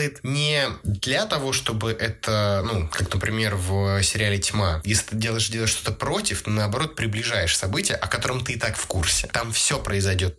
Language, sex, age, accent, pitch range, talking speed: Russian, male, 20-39, native, 100-130 Hz, 180 wpm